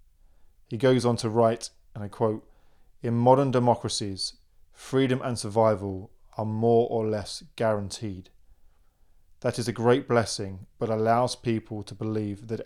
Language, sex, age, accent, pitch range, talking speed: English, male, 20-39, British, 100-125 Hz, 140 wpm